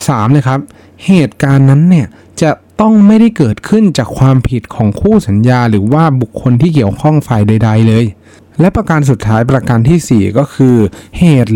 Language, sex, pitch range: Thai, male, 105-150 Hz